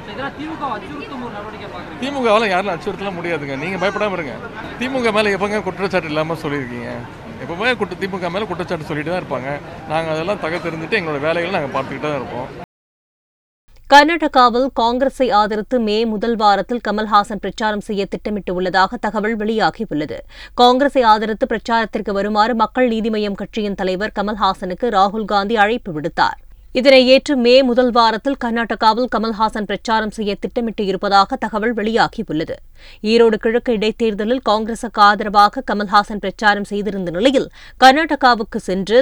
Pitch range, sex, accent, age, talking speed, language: 195-240 Hz, female, native, 30-49, 80 wpm, Tamil